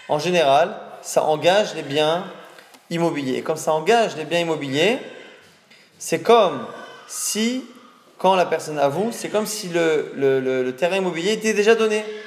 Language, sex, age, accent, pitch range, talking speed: French, male, 20-39, French, 135-190 Hz, 160 wpm